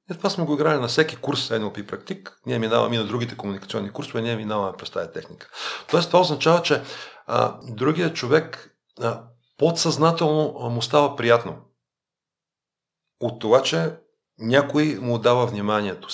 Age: 50-69